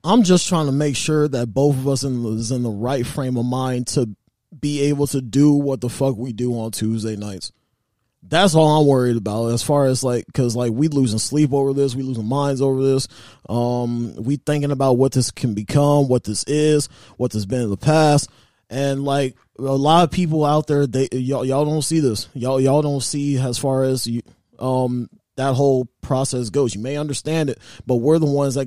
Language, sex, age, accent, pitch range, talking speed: English, male, 20-39, American, 120-150 Hz, 220 wpm